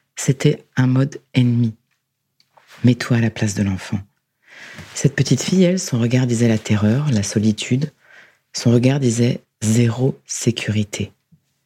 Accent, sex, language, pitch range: French, female, French, 120-160 Hz